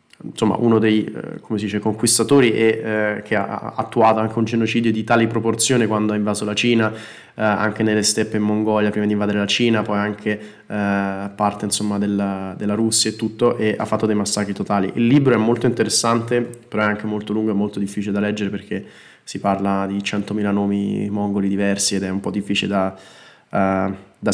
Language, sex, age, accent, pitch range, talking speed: Italian, male, 20-39, native, 100-110 Hz, 200 wpm